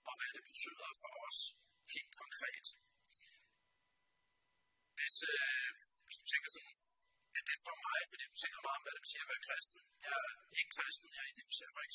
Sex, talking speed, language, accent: male, 215 wpm, Danish, native